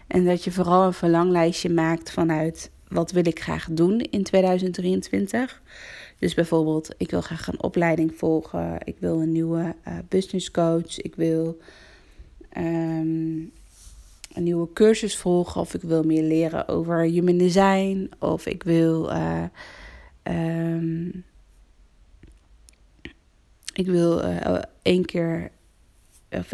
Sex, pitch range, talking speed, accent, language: female, 160-185 Hz, 105 wpm, Dutch, Dutch